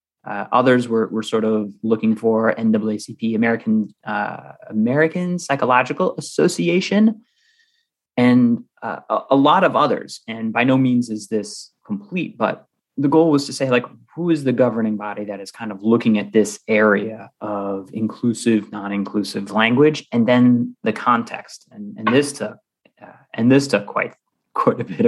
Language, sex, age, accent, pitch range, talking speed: English, male, 30-49, American, 105-125 Hz, 165 wpm